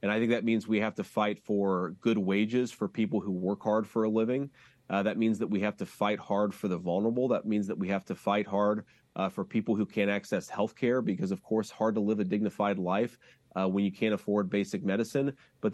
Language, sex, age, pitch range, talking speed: English, male, 30-49, 100-115 Hz, 250 wpm